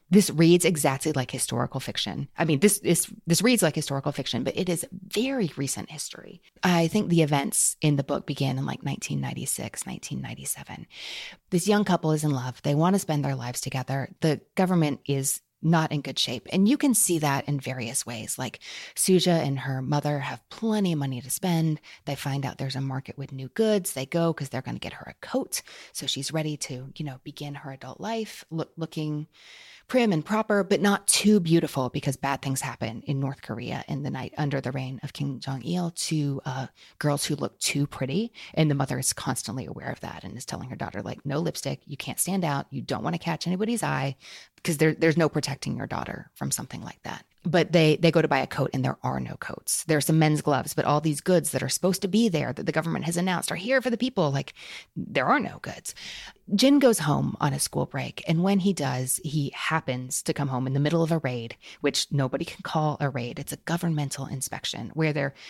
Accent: American